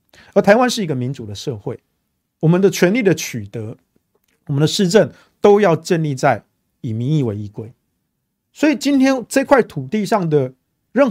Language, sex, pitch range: Chinese, male, 115-175 Hz